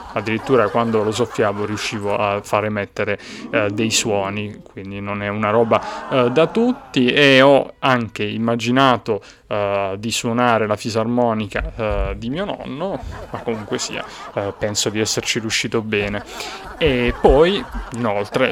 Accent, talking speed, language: native, 135 wpm, Italian